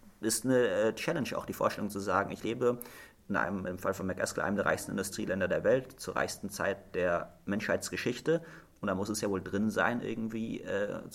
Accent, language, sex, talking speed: German, German, male, 200 wpm